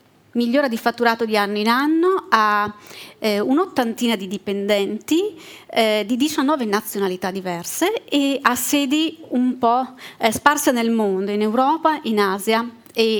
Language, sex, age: Italian, female, 30-49